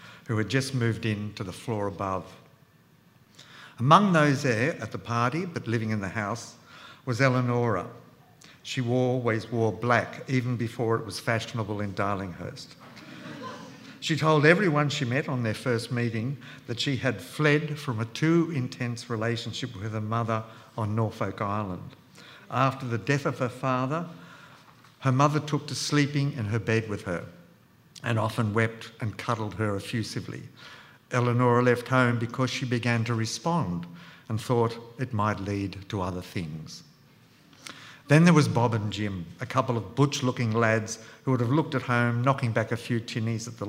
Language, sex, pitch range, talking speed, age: English, male, 110-140 Hz, 165 wpm, 60-79